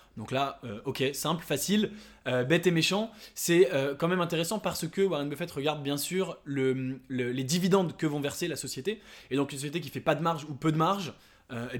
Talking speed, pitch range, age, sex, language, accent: 235 wpm, 135-175 Hz, 20-39, male, English, French